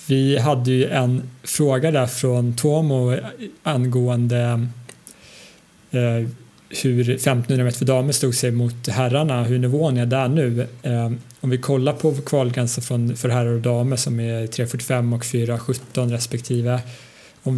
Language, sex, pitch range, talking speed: English, male, 120-135 Hz, 135 wpm